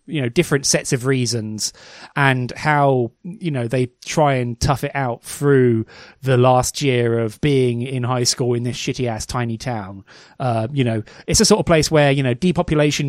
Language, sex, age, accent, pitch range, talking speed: English, male, 30-49, British, 125-155 Hz, 195 wpm